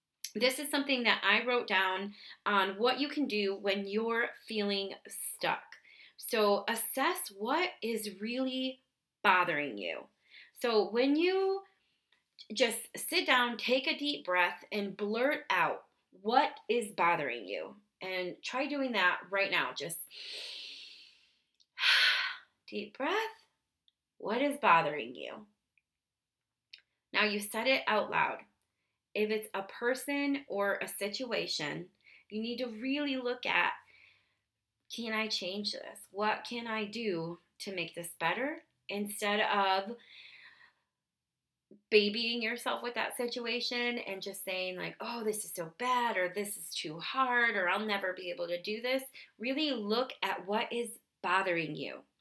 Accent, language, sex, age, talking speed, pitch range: American, English, female, 20-39, 140 wpm, 200-265 Hz